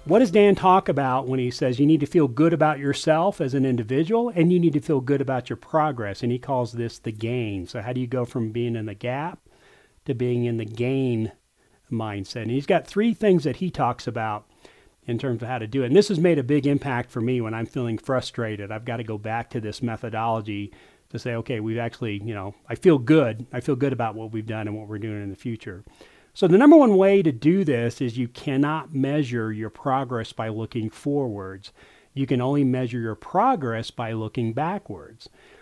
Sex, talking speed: male, 230 wpm